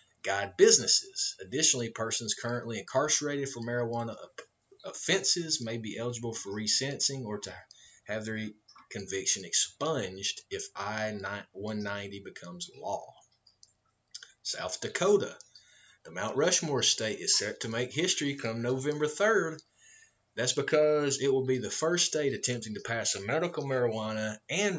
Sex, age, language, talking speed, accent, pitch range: male, 30-49, English, 130 wpm, American, 105-135 Hz